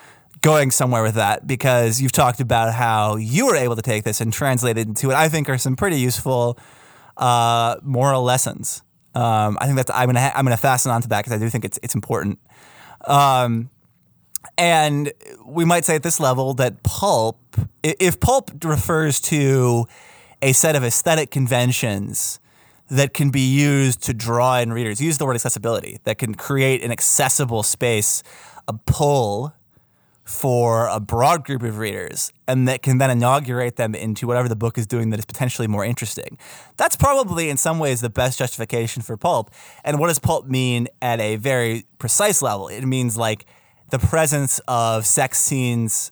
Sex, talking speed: male, 180 wpm